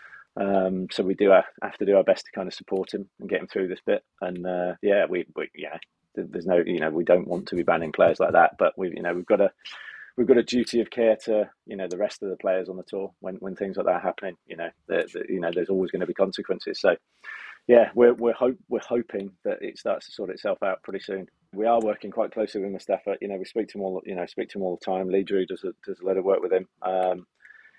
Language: English